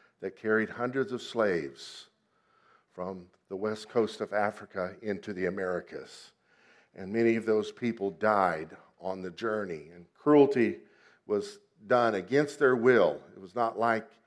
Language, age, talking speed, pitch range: English, 50-69, 145 wpm, 110-145 Hz